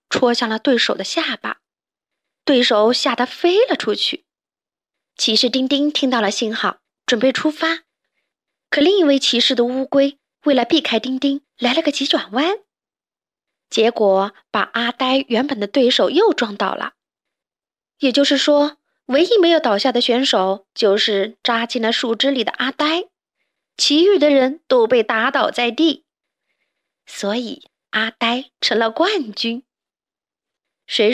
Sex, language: female, Chinese